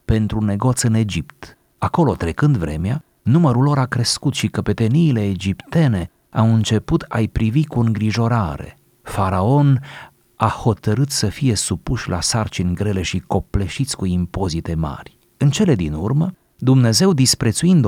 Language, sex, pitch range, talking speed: Romanian, male, 95-125 Hz, 140 wpm